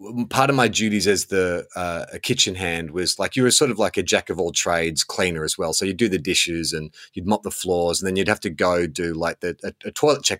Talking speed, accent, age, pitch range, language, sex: 250 wpm, Australian, 30-49, 95-150 Hz, English, male